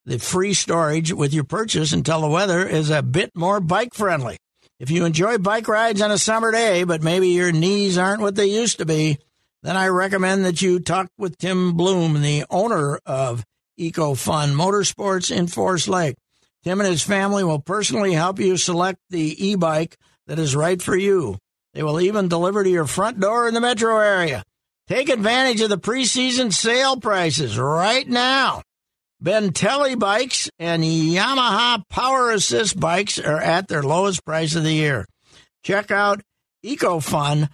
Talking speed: 170 wpm